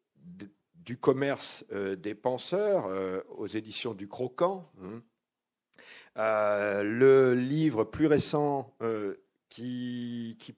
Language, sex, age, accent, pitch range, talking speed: French, male, 50-69, French, 95-125 Hz, 120 wpm